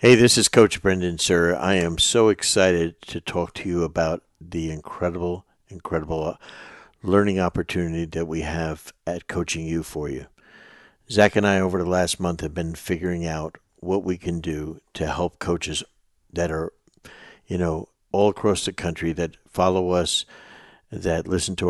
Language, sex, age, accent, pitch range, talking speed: English, male, 60-79, American, 85-100 Hz, 165 wpm